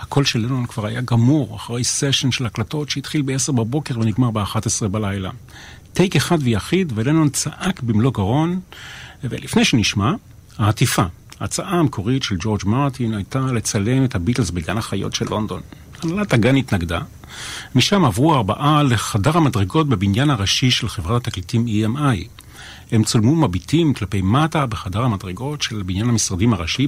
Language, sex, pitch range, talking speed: Hebrew, male, 105-135 Hz, 145 wpm